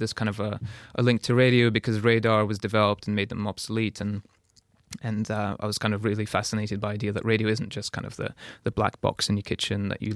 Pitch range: 100-115 Hz